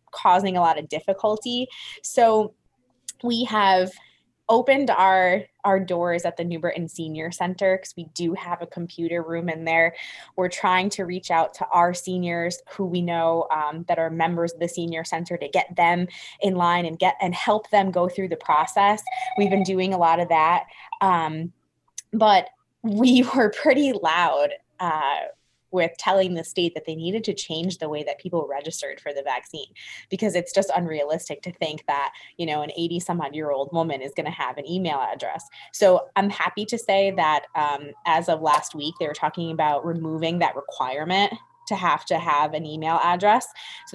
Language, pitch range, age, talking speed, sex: English, 165-205 Hz, 20-39, 190 wpm, female